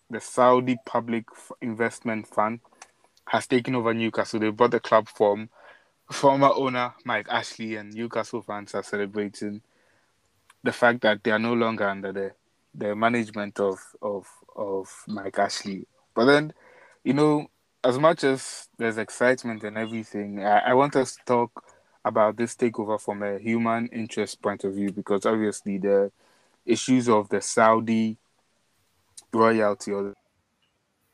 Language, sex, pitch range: English, male, 105-120 Hz